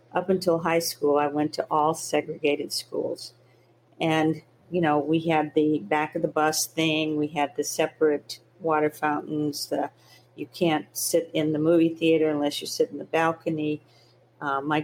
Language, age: English, 50-69